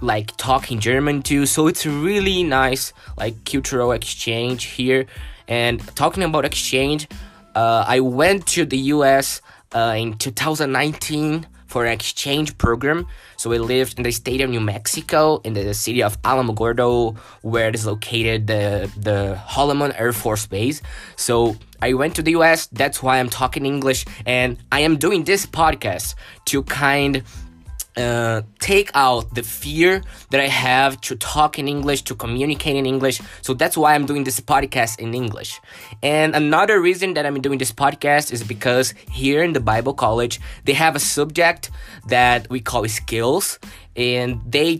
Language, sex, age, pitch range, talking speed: English, male, 20-39, 115-145 Hz, 165 wpm